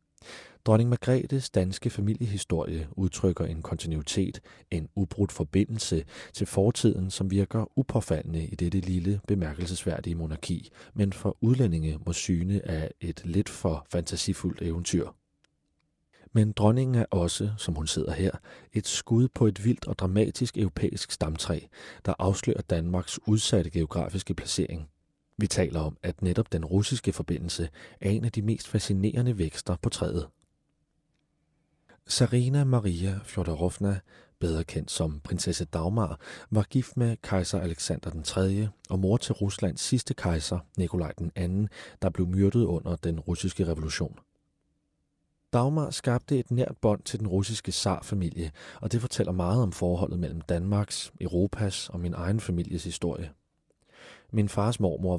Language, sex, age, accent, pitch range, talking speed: Danish, male, 30-49, native, 85-105 Hz, 135 wpm